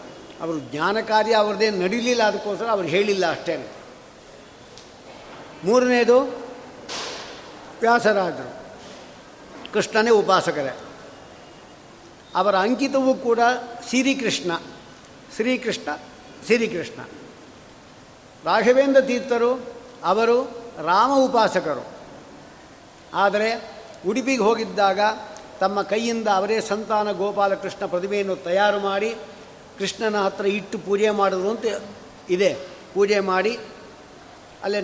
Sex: male